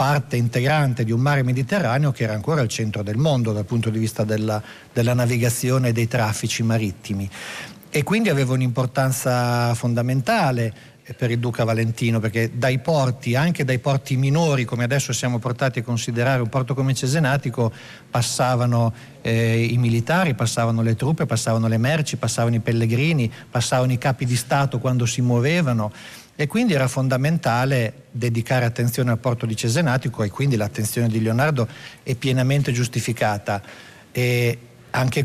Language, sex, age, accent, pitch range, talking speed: Italian, male, 50-69, native, 115-135 Hz, 155 wpm